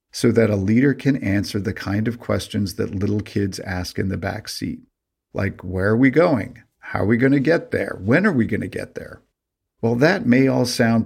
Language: English